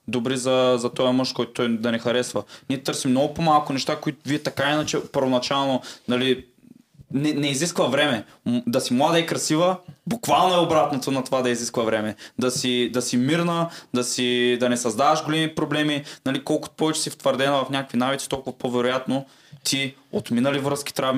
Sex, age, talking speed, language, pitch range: male, 20-39, 180 wpm, English, 125-145 Hz